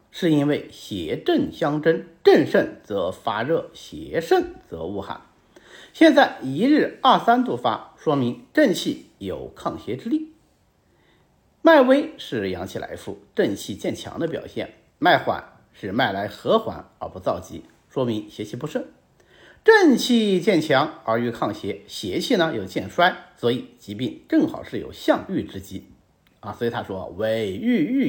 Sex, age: male, 50-69